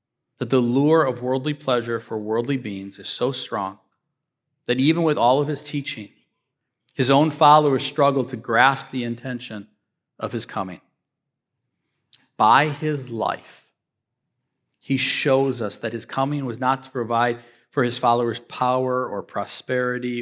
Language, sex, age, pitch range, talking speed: English, male, 40-59, 120-140 Hz, 145 wpm